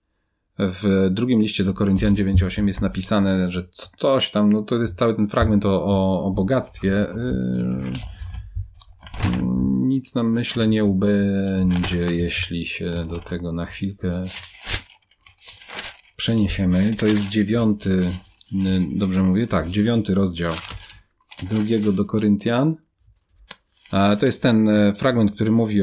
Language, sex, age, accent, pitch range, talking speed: Polish, male, 40-59, native, 95-110 Hz, 120 wpm